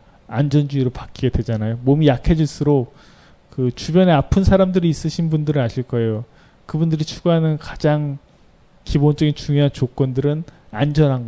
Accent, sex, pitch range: native, male, 120-160 Hz